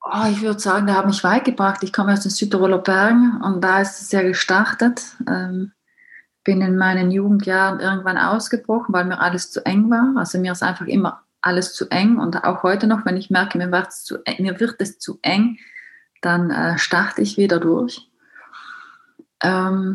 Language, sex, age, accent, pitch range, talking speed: German, female, 30-49, German, 180-205 Hz, 200 wpm